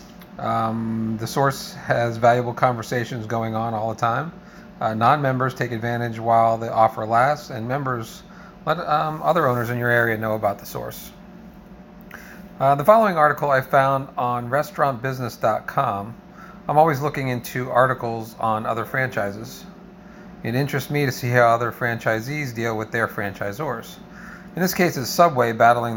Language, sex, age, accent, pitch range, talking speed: English, male, 40-59, American, 115-165 Hz, 150 wpm